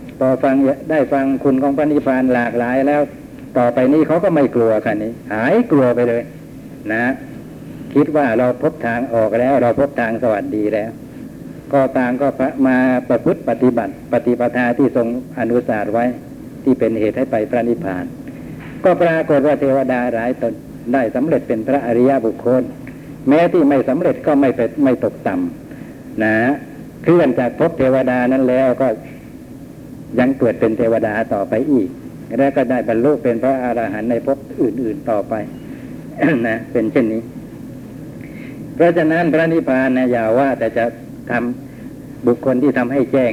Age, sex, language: 60-79, male, Thai